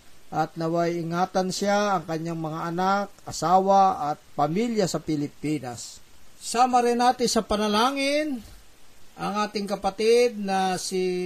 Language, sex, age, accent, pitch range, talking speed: Filipino, male, 50-69, native, 165-210 Hz, 115 wpm